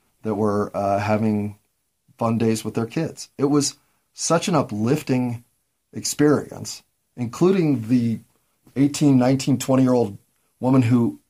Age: 40-59